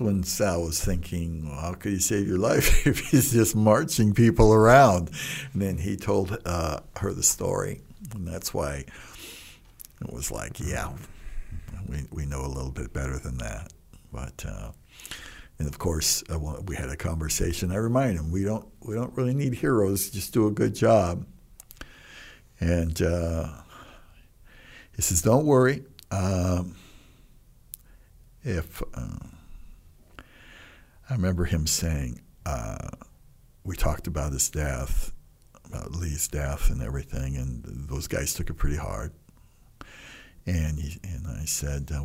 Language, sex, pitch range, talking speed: English, male, 75-95 Hz, 150 wpm